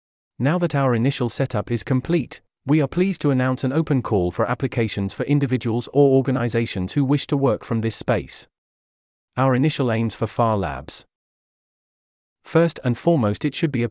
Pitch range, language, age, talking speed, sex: 110-145 Hz, English, 40-59, 175 wpm, male